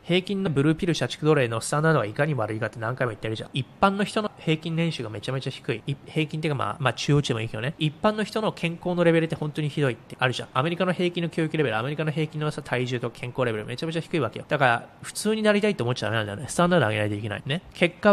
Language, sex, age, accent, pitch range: Japanese, male, 20-39, native, 120-165 Hz